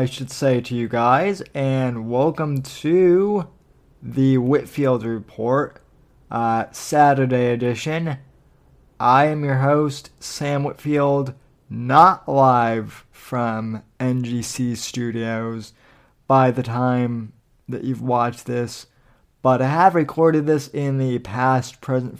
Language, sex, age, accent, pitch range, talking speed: English, male, 20-39, American, 120-135 Hz, 110 wpm